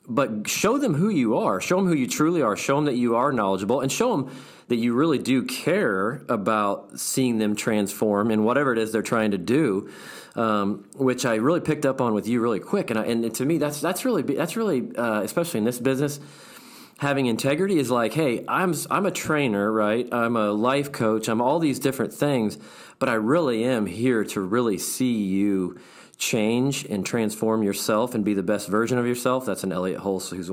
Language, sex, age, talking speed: English, male, 40-59, 210 wpm